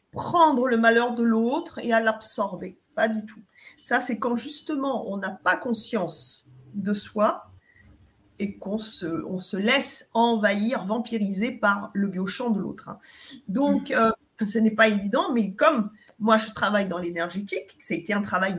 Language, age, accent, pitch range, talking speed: French, 40-59, French, 200-265 Hz, 170 wpm